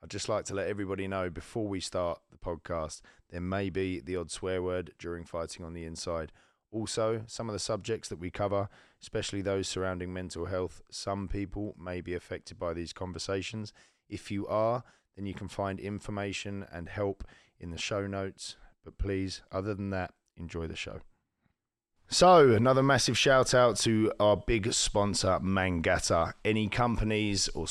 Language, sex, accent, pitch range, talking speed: English, male, British, 90-110 Hz, 175 wpm